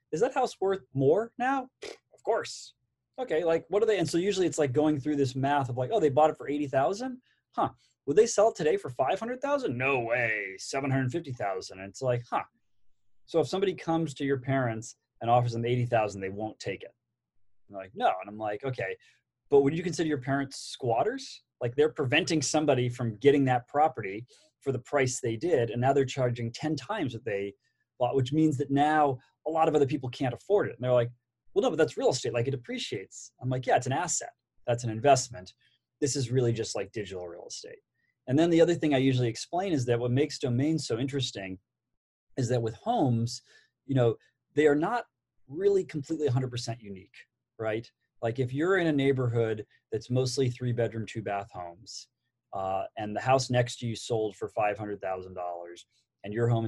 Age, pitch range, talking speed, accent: 30-49, 115-155 Hz, 205 wpm, American